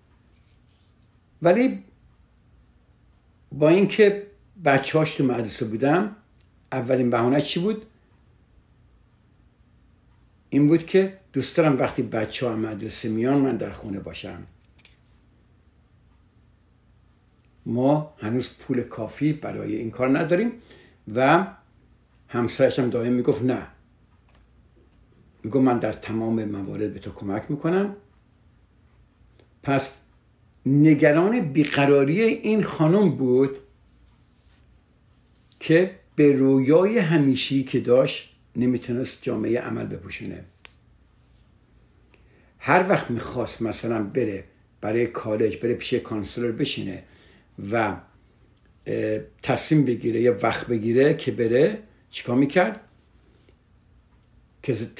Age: 60-79